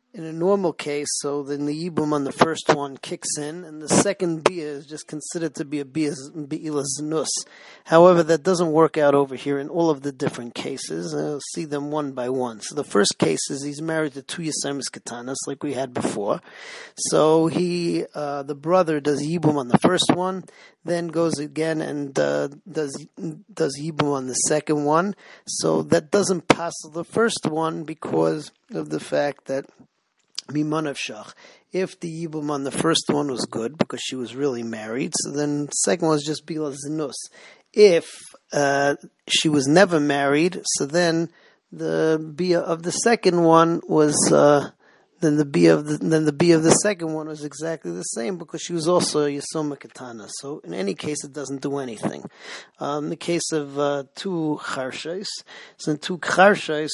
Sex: male